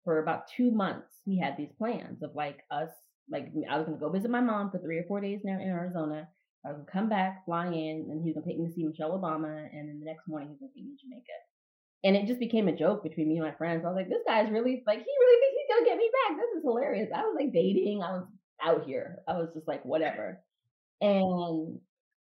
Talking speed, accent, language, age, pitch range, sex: 280 wpm, American, English, 30-49, 150-200 Hz, female